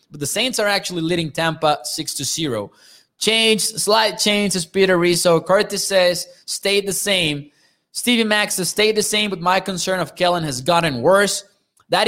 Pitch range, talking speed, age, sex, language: 170-210 Hz, 170 wpm, 20-39, male, English